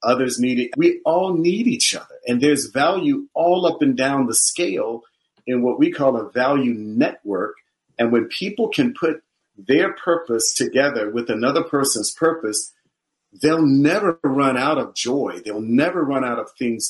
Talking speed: 170 wpm